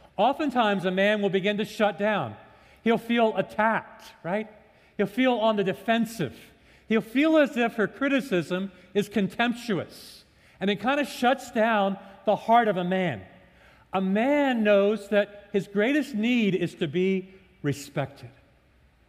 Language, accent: English, American